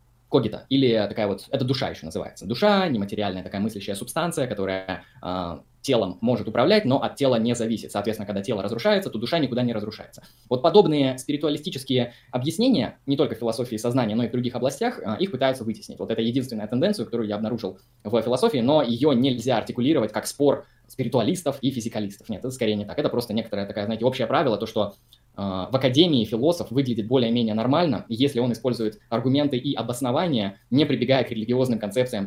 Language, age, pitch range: Russian, 20-39, 105-130 Hz